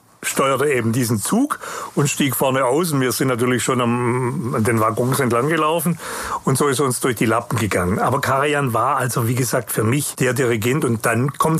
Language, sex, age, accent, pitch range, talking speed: German, male, 40-59, German, 115-145 Hz, 200 wpm